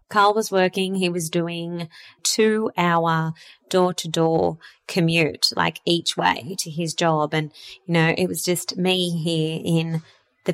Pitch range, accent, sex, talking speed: 170-195 Hz, Australian, female, 160 wpm